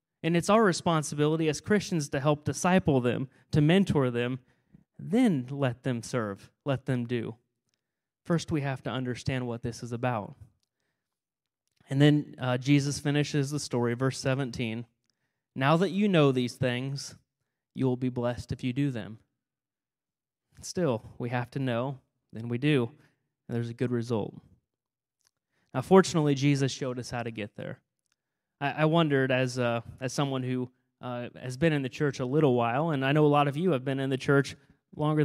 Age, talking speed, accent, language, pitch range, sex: 30-49, 175 wpm, American, English, 125-155 Hz, male